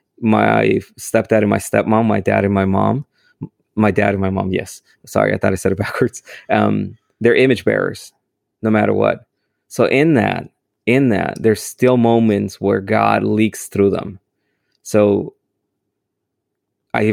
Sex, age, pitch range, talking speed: male, 20-39, 100-115 Hz, 160 wpm